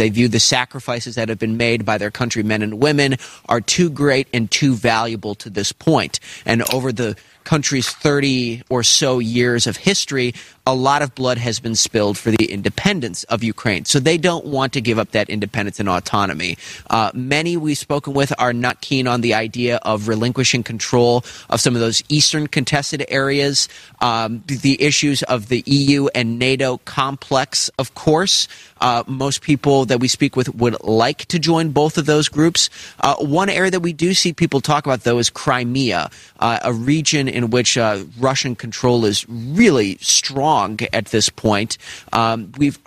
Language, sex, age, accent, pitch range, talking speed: English, male, 30-49, American, 115-145 Hz, 185 wpm